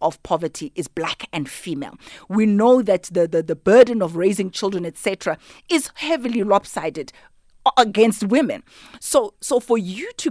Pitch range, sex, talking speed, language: 175-230 Hz, female, 165 wpm, English